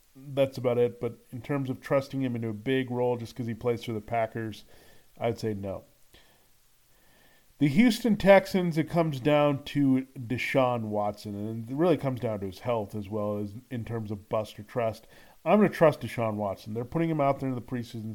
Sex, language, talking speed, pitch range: male, English, 210 wpm, 115-135 Hz